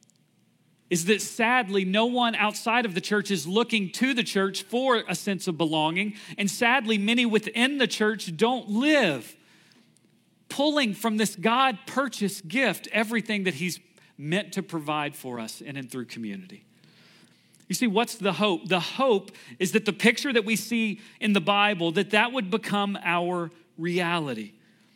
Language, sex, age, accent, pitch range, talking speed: English, male, 40-59, American, 175-220 Hz, 160 wpm